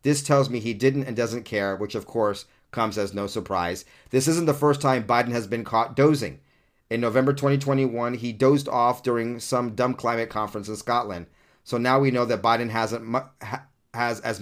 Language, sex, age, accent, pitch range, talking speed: English, male, 30-49, American, 115-135 Hz, 210 wpm